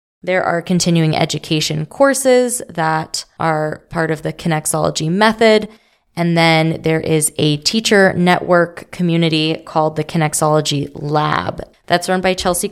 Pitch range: 160-180 Hz